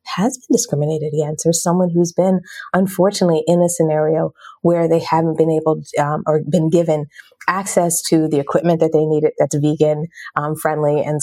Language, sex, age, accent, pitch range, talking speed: English, female, 30-49, American, 155-185 Hz, 175 wpm